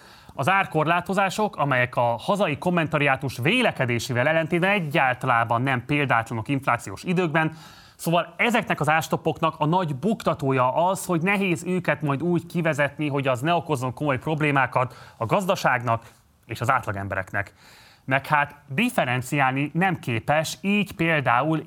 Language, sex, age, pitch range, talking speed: Hungarian, male, 20-39, 130-170 Hz, 125 wpm